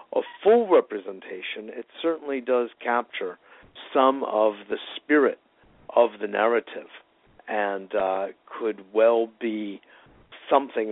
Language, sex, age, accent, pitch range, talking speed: English, male, 50-69, American, 110-140 Hz, 110 wpm